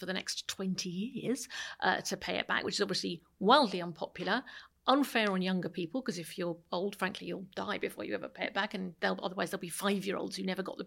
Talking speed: 225 wpm